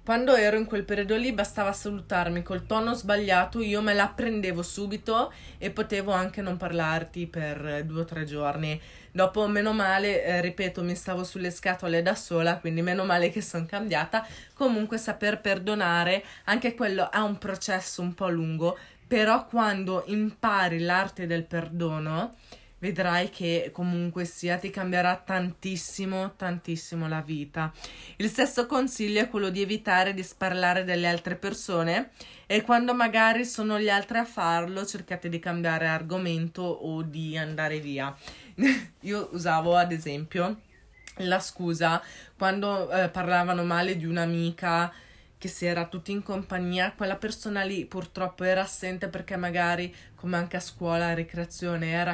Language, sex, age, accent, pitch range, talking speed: Italian, female, 20-39, native, 170-205 Hz, 150 wpm